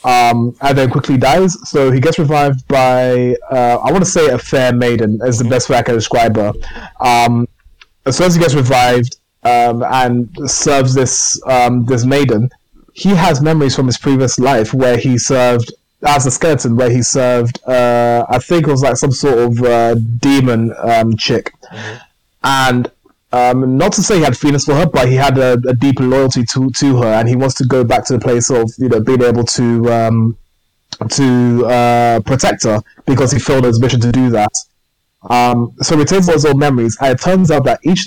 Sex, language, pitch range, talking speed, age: male, English, 120-140 Hz, 205 wpm, 20-39